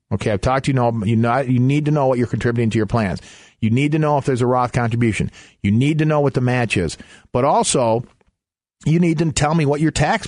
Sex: male